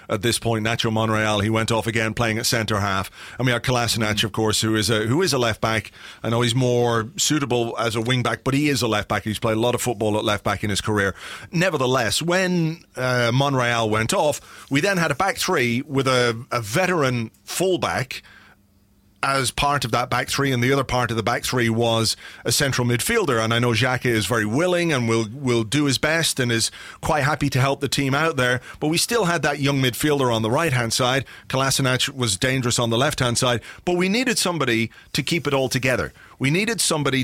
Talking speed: 220 wpm